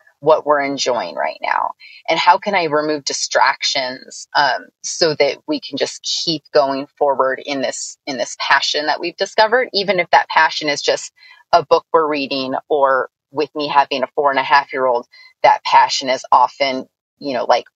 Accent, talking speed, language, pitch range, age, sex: American, 190 wpm, English, 145-235 Hz, 30-49, female